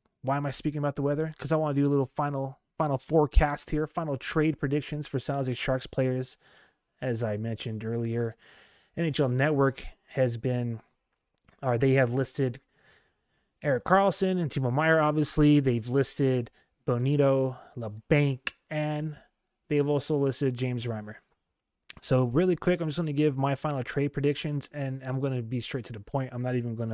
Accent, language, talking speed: American, English, 180 wpm